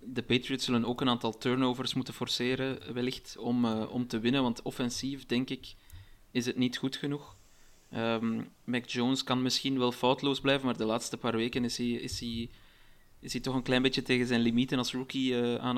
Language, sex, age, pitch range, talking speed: Dutch, male, 20-39, 115-135 Hz, 190 wpm